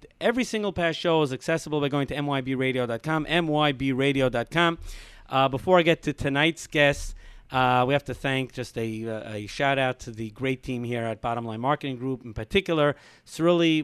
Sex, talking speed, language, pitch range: male, 170 wpm, English, 125-170 Hz